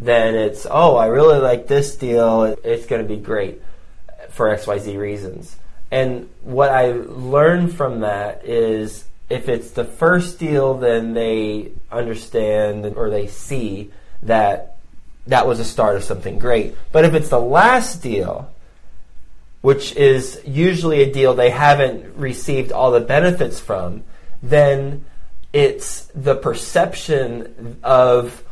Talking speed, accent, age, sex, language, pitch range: 135 wpm, American, 20-39, male, English, 115-140 Hz